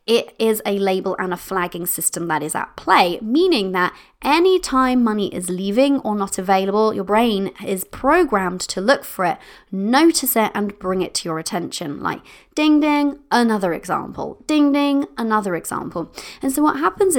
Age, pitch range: 30-49, 185-240 Hz